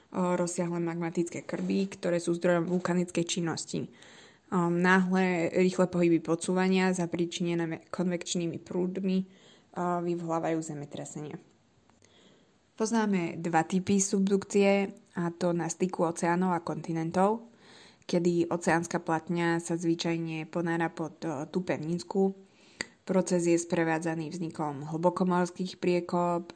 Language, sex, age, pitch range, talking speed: Slovak, female, 20-39, 160-180 Hz, 100 wpm